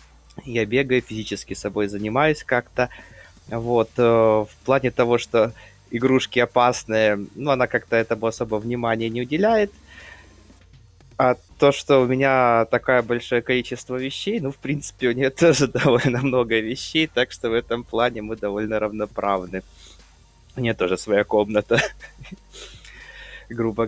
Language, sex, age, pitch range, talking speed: Russian, male, 20-39, 105-130 Hz, 135 wpm